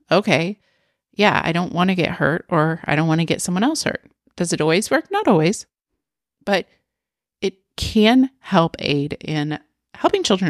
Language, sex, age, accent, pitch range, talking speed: English, female, 30-49, American, 150-190 Hz, 175 wpm